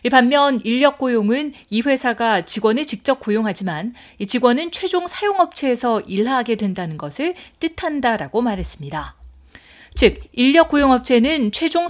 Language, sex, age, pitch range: Korean, female, 40-59, 205-280 Hz